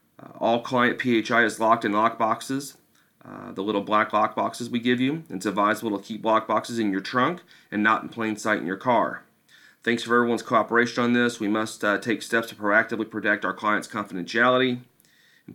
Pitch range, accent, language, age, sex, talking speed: 115-155 Hz, American, English, 40-59, male, 195 wpm